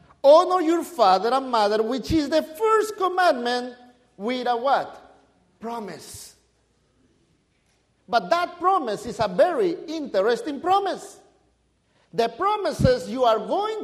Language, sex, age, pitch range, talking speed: English, male, 50-69, 230-350 Hz, 115 wpm